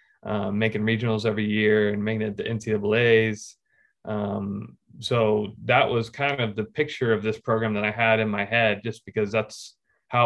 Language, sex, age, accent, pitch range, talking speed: English, male, 20-39, American, 105-115 Hz, 180 wpm